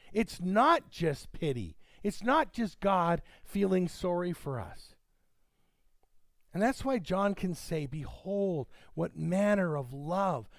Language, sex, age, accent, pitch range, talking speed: English, male, 50-69, American, 150-230 Hz, 130 wpm